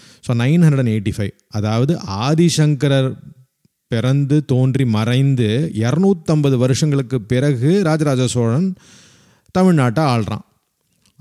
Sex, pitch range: male, 120-150 Hz